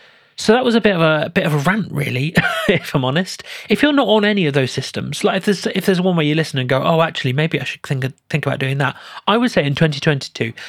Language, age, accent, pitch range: English, 30-49, British, 135-175 Hz